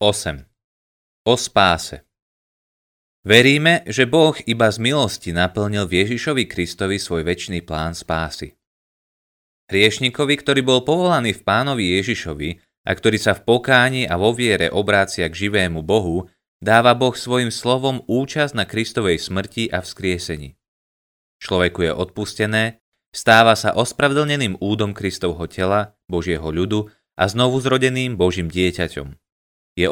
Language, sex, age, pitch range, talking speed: Slovak, male, 30-49, 90-120 Hz, 125 wpm